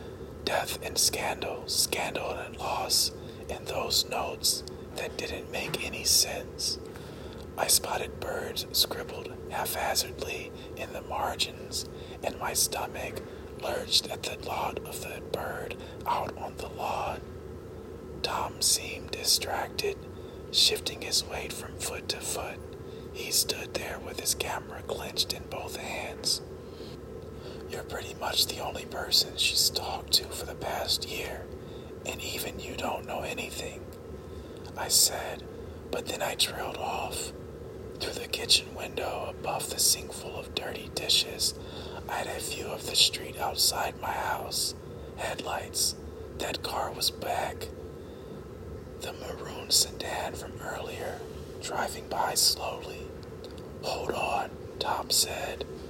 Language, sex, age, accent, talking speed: English, male, 40-59, American, 130 wpm